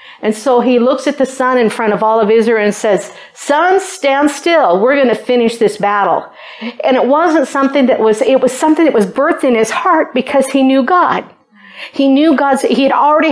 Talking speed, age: 220 wpm, 50-69